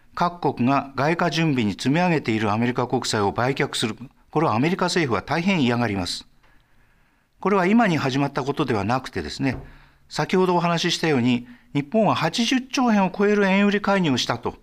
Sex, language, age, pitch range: male, Japanese, 50-69, 130-200 Hz